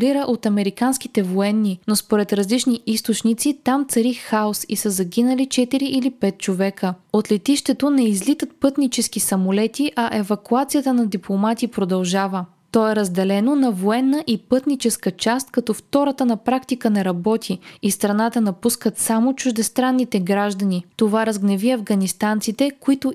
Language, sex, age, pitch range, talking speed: Bulgarian, female, 20-39, 205-260 Hz, 135 wpm